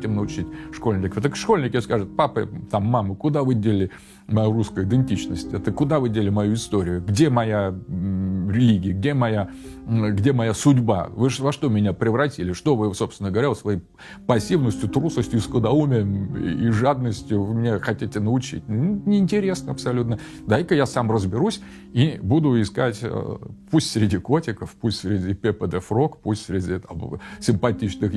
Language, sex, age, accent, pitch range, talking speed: Russian, male, 40-59, native, 105-145 Hz, 145 wpm